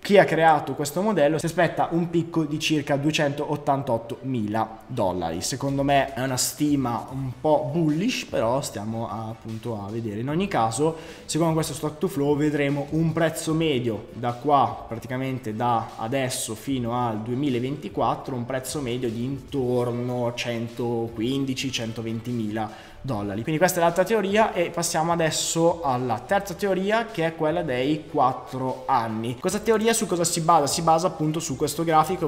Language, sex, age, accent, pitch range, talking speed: Italian, male, 20-39, native, 125-170 Hz, 155 wpm